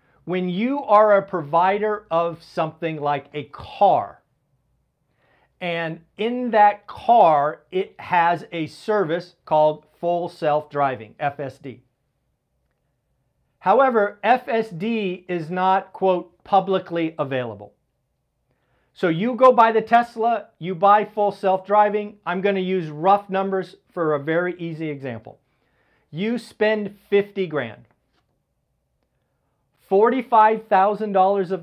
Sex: male